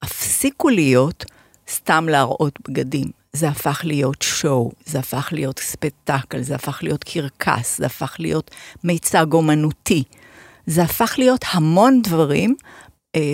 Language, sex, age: Hebrew, female, 50-69